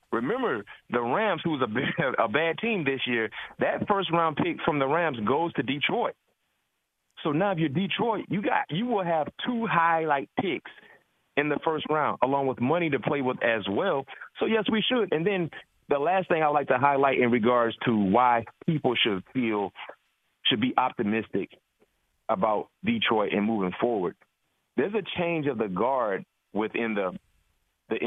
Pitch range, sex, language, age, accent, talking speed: 120-170 Hz, male, English, 30-49, American, 175 wpm